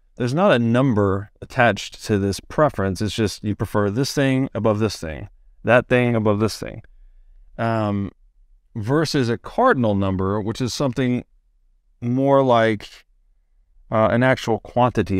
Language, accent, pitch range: English, American, 90-120 Hz